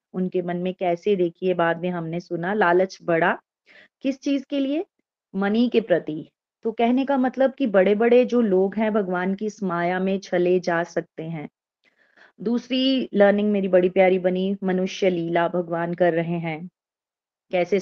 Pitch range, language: 170-210 Hz, Hindi